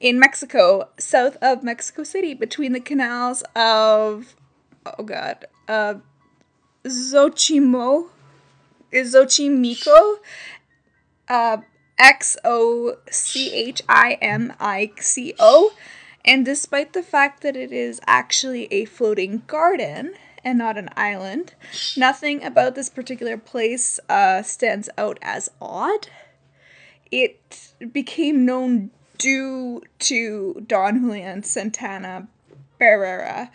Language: English